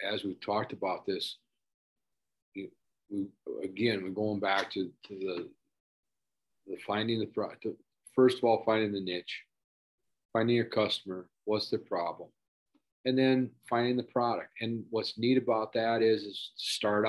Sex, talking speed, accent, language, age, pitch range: male, 150 wpm, American, English, 40-59, 100-125 Hz